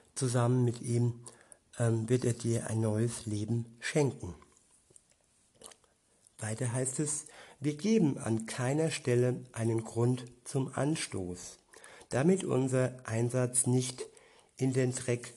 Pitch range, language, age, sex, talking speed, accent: 120-135 Hz, German, 60-79, male, 115 wpm, German